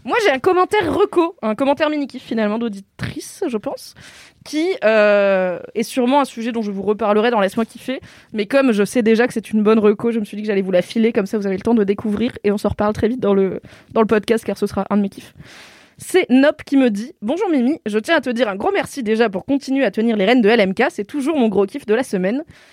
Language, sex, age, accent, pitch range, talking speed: French, female, 20-39, French, 210-275 Hz, 275 wpm